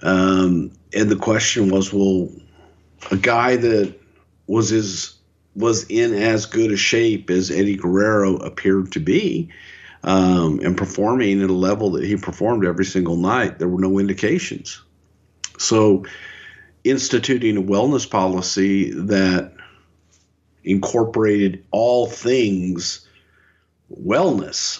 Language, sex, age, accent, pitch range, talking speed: English, male, 50-69, American, 90-105 Hz, 120 wpm